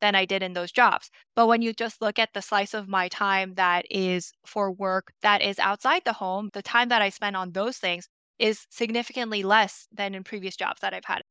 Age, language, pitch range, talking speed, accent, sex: 10-29, English, 190-230 Hz, 235 wpm, American, female